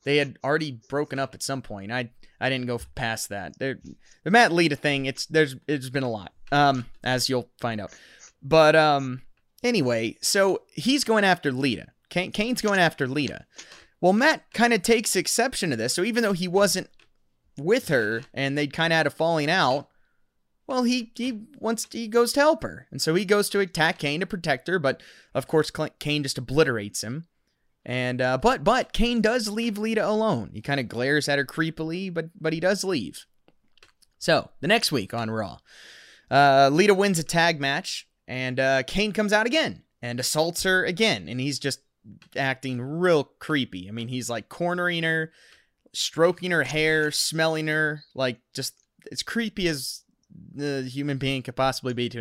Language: English